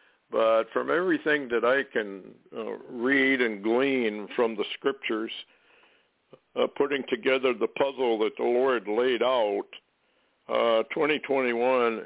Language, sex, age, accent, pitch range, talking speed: English, male, 60-79, American, 110-140 Hz, 125 wpm